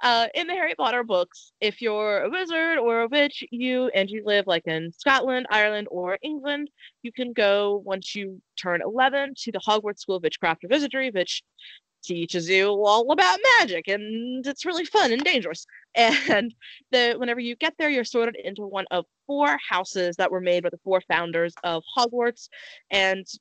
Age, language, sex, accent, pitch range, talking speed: 20-39, English, female, American, 180-245 Hz, 185 wpm